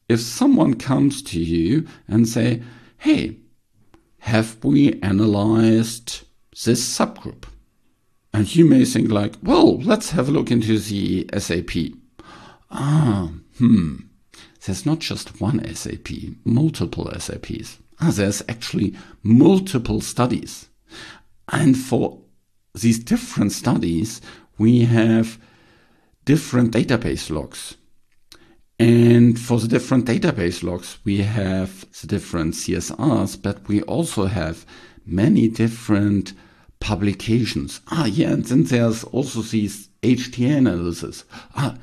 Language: English